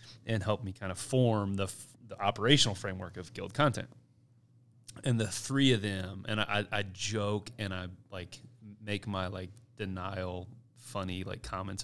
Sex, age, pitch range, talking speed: male, 30-49, 95-120 Hz, 160 wpm